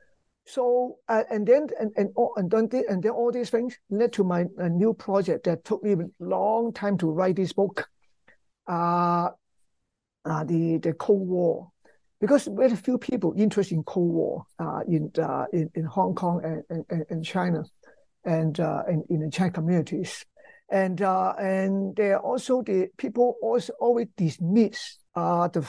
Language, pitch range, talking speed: English, 165-220 Hz, 170 wpm